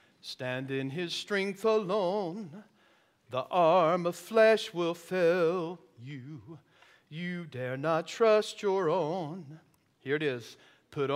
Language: English